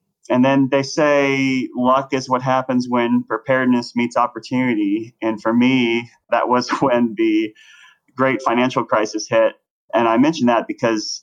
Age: 30-49